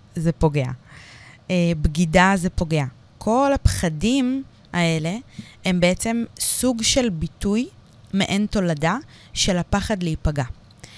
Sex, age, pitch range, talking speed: female, 20-39, 150-205 Hz, 100 wpm